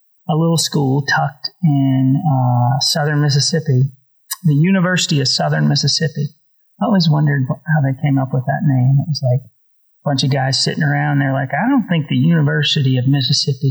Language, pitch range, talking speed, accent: English, 130-155 Hz, 180 wpm, American